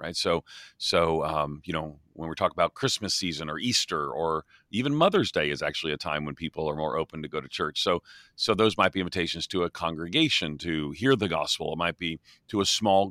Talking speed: 230 wpm